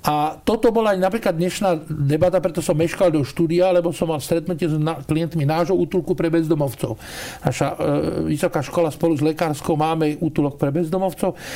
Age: 50-69